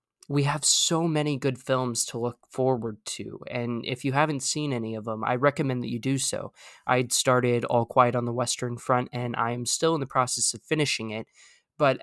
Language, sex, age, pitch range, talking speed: English, male, 20-39, 120-135 Hz, 210 wpm